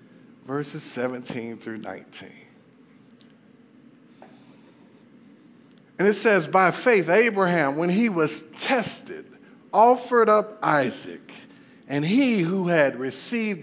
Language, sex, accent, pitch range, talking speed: English, male, American, 210-280 Hz, 95 wpm